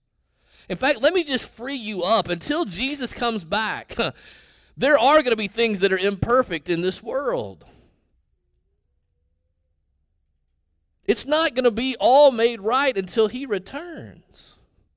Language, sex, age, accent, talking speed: English, male, 30-49, American, 140 wpm